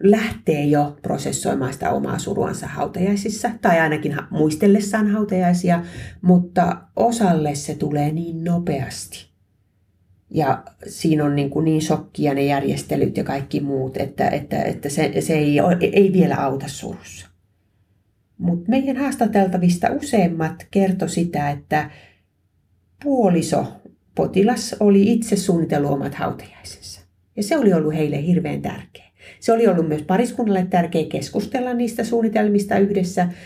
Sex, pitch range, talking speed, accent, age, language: female, 140-200 Hz, 125 wpm, native, 40-59, Finnish